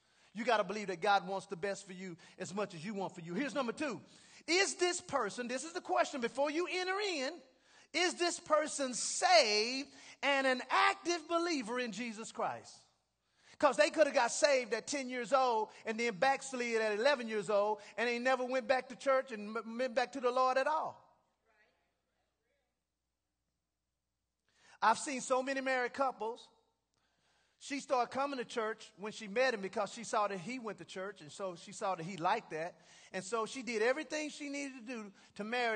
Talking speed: 195 wpm